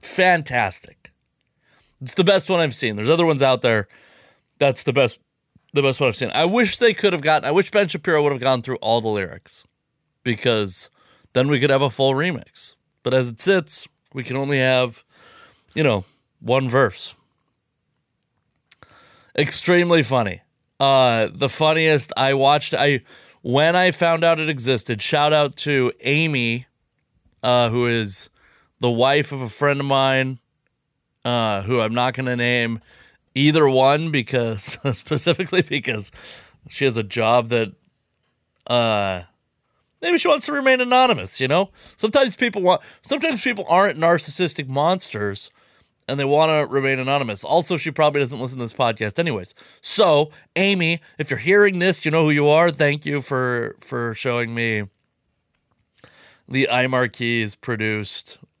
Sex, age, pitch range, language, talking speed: male, 30-49, 120-160 Hz, English, 160 wpm